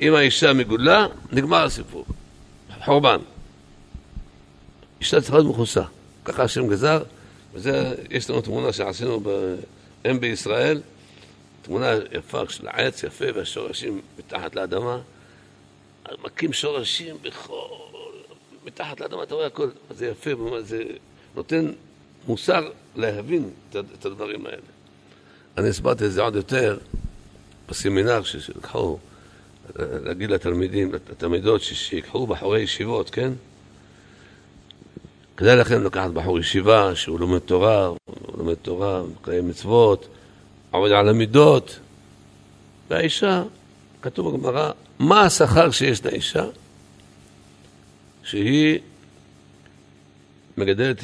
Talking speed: 100 wpm